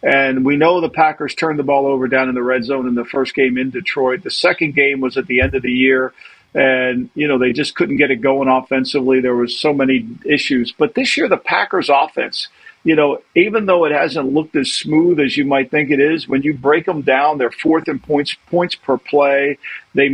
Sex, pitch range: male, 130-155 Hz